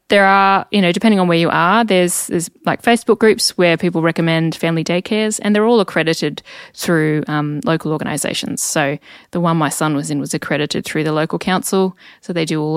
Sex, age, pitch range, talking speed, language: female, 20-39, 160-195 Hz, 205 wpm, English